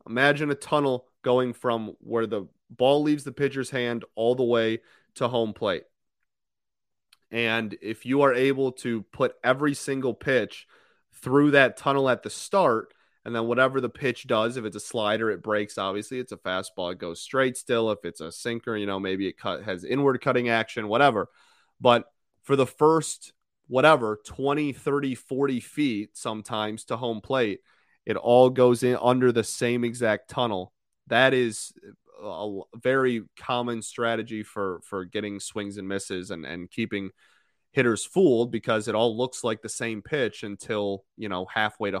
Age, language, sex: 30-49, English, male